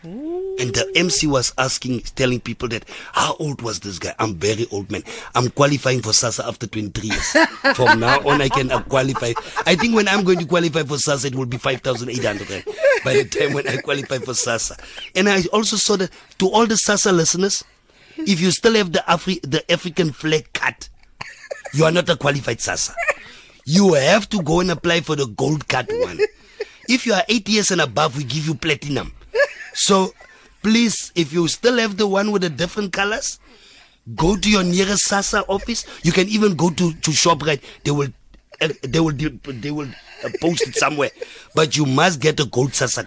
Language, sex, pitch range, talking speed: English, male, 135-195 Hz, 195 wpm